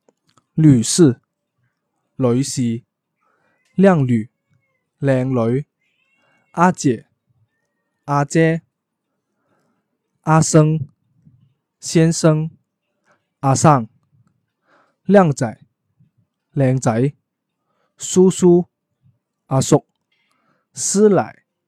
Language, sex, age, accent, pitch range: Chinese, male, 20-39, native, 125-155 Hz